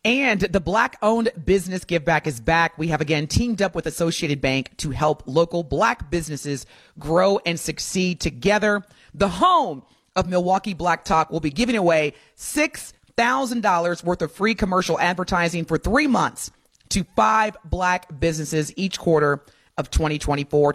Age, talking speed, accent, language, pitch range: 30-49, 150 wpm, American, English, 165-220 Hz